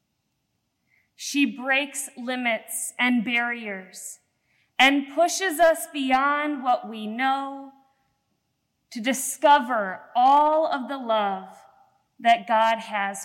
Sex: female